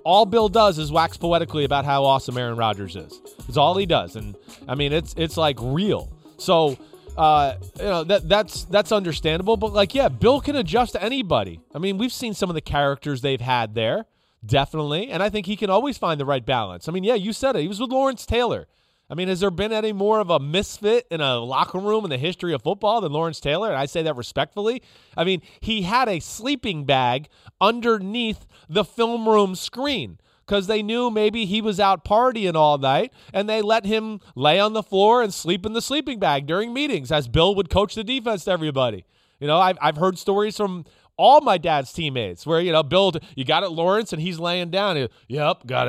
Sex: male